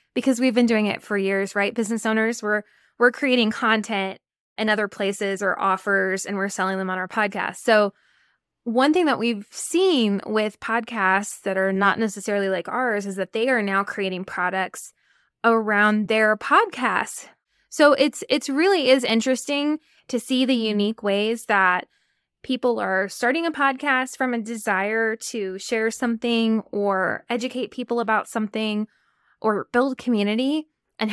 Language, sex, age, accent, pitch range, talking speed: English, female, 10-29, American, 200-250 Hz, 160 wpm